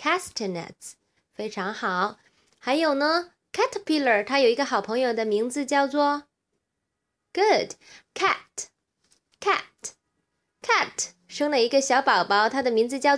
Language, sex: Chinese, female